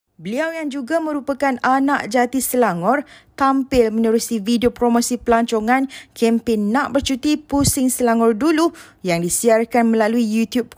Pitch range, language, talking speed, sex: 225-275 Hz, Malay, 125 wpm, female